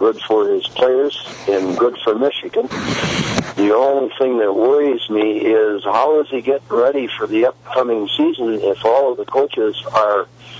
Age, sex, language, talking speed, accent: 60-79, male, English, 170 wpm, American